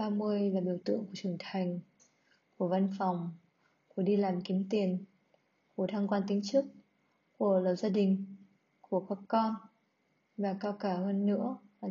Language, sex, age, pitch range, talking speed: Vietnamese, female, 20-39, 190-230 Hz, 165 wpm